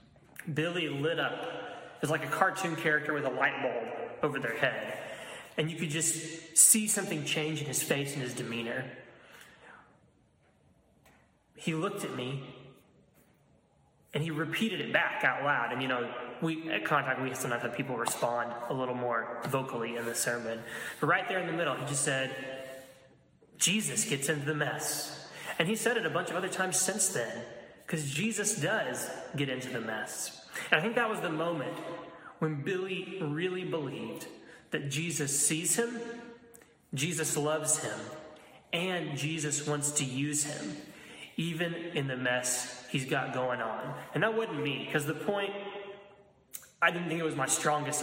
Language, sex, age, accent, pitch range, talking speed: English, male, 20-39, American, 130-170 Hz, 170 wpm